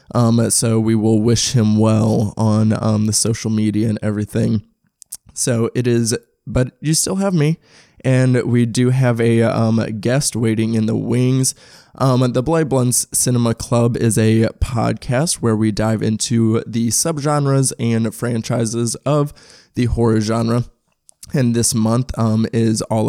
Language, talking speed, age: English, 155 wpm, 20-39